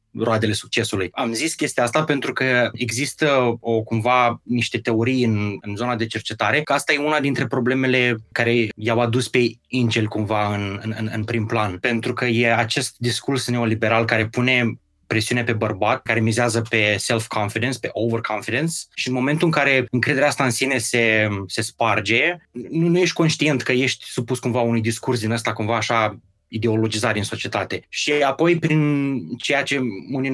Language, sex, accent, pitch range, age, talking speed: Romanian, male, native, 110-130 Hz, 20-39, 170 wpm